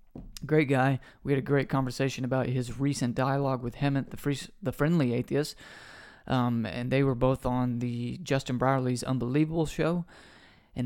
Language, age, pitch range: English, 30-49, 120-135 Hz